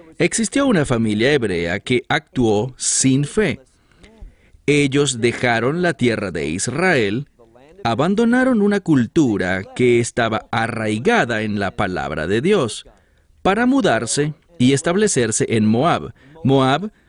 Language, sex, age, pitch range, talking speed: English, male, 40-59, 110-170 Hz, 110 wpm